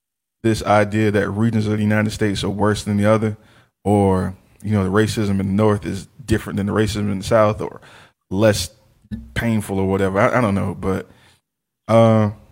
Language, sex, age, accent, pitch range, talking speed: English, male, 20-39, American, 100-115 Hz, 190 wpm